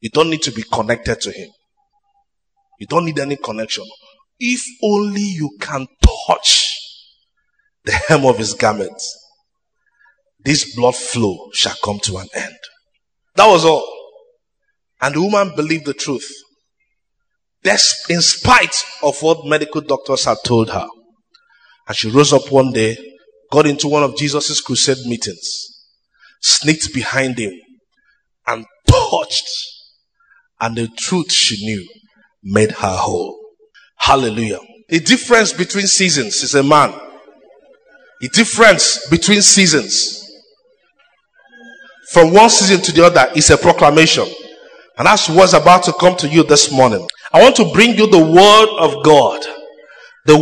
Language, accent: English, Nigerian